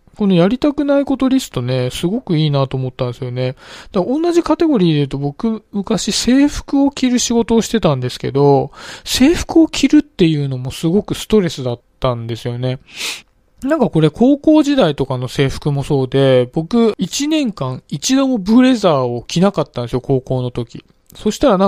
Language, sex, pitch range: Japanese, male, 135-200 Hz